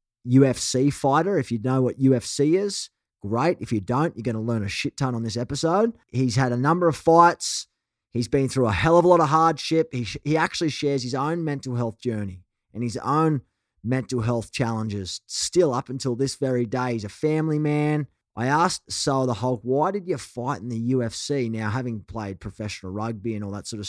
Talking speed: 215 wpm